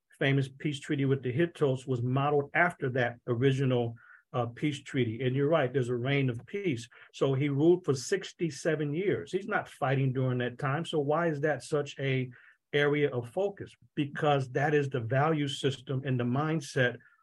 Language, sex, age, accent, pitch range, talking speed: English, male, 50-69, American, 125-145 Hz, 180 wpm